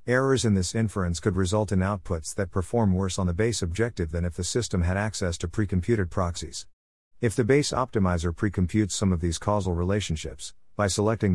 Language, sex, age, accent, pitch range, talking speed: English, male, 50-69, American, 90-110 Hz, 190 wpm